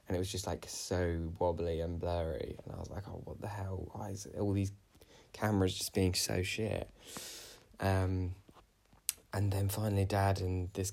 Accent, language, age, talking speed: British, English, 10-29, 185 wpm